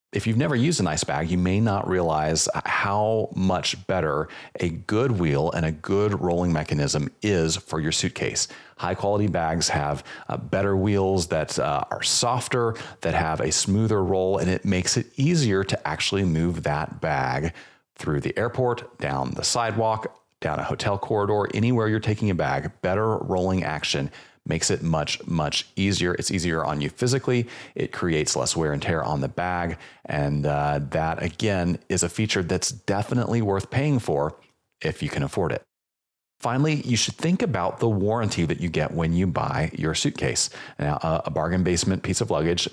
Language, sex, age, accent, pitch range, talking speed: English, male, 30-49, American, 85-105 Hz, 180 wpm